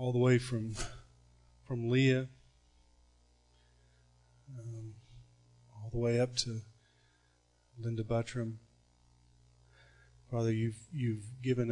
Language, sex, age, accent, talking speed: English, male, 40-59, American, 90 wpm